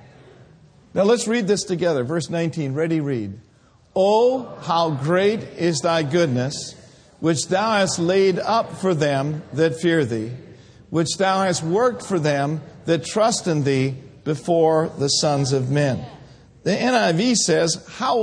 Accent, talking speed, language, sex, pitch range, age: American, 145 wpm, English, male, 140-205 Hz, 50-69